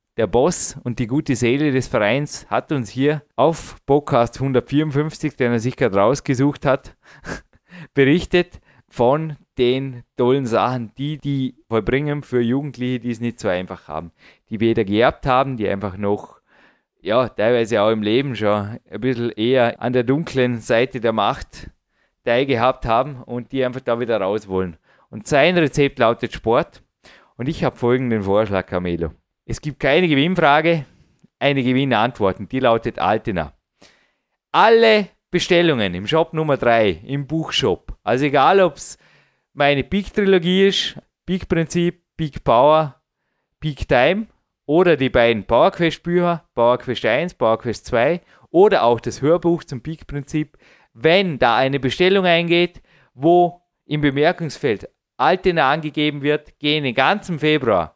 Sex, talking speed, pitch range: male, 145 wpm, 120-155 Hz